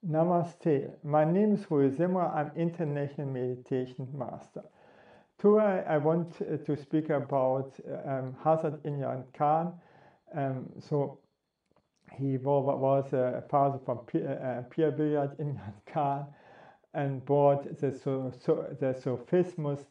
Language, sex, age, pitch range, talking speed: English, male, 50-69, 140-180 Hz, 110 wpm